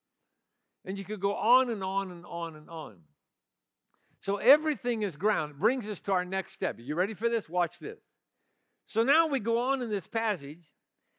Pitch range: 175-245 Hz